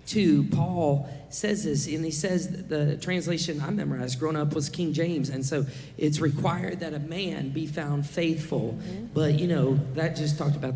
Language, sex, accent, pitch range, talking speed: English, male, American, 135-165 Hz, 185 wpm